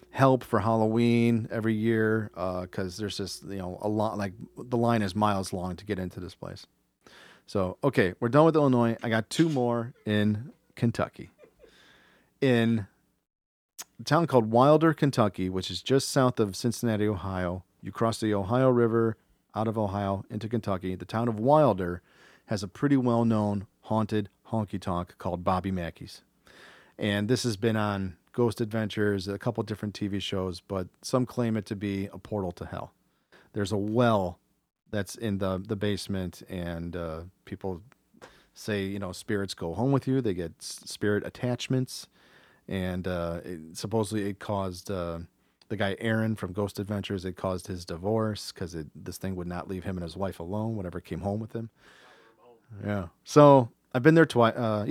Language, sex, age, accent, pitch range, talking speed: English, male, 40-59, American, 95-115 Hz, 170 wpm